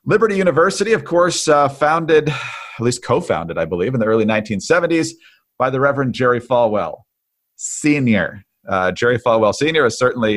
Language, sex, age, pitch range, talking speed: English, male, 40-59, 110-145 Hz, 150 wpm